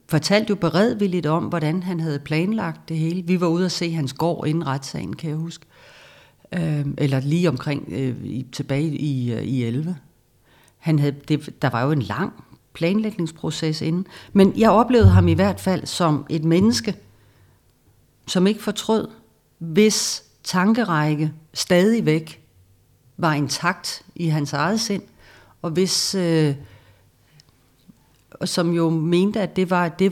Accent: native